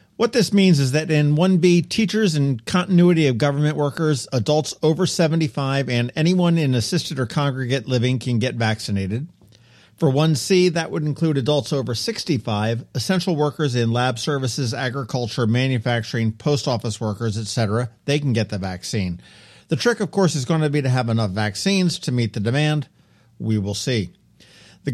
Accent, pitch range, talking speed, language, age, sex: American, 115-165 Hz, 170 wpm, English, 50-69, male